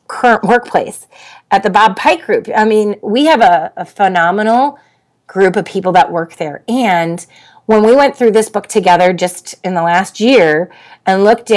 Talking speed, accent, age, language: 180 wpm, American, 30-49, English